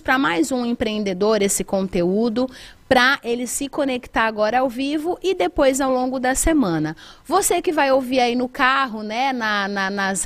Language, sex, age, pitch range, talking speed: Portuguese, female, 30-49, 220-275 Hz, 175 wpm